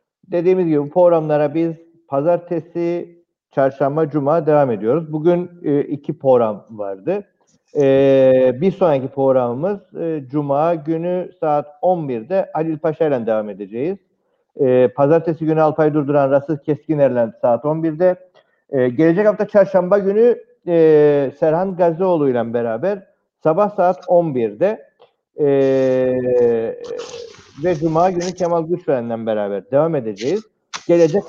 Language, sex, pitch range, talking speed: Turkish, male, 135-175 Hz, 115 wpm